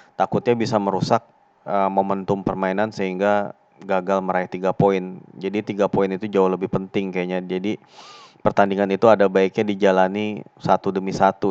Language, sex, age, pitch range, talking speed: Indonesian, male, 20-39, 95-105 Hz, 140 wpm